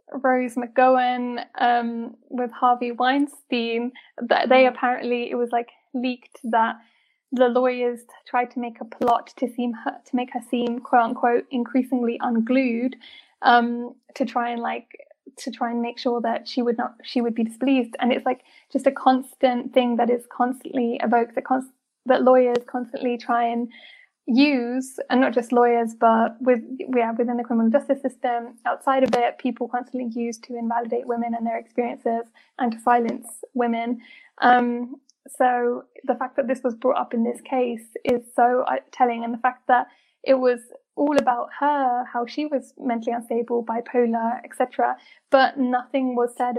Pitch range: 240-260 Hz